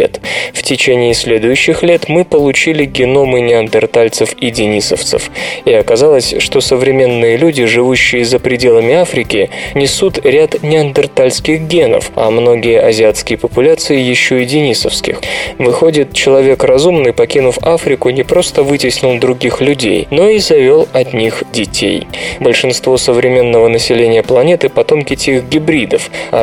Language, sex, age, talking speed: Russian, male, 20-39, 125 wpm